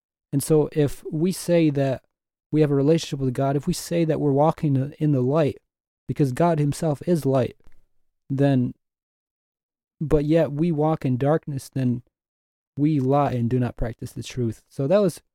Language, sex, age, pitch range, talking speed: English, male, 20-39, 125-150 Hz, 175 wpm